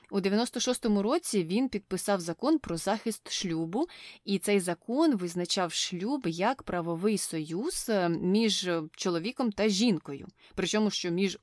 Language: Ukrainian